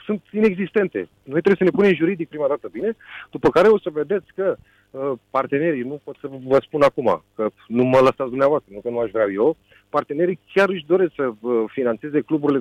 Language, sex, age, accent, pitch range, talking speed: Romanian, male, 30-49, native, 135-185 Hz, 200 wpm